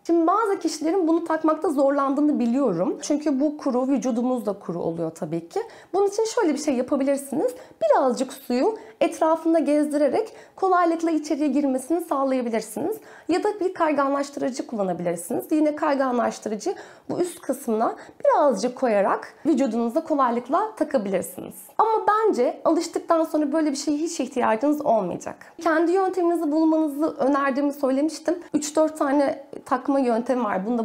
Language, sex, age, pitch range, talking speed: Turkish, female, 30-49, 245-330 Hz, 130 wpm